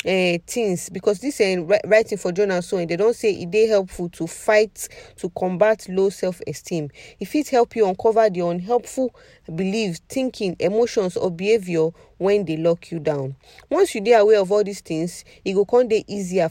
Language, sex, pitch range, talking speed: English, female, 175-225 Hz, 190 wpm